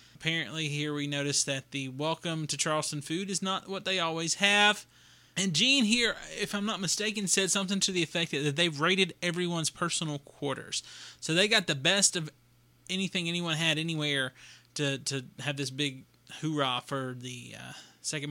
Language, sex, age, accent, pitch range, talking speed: English, male, 20-39, American, 135-175 Hz, 175 wpm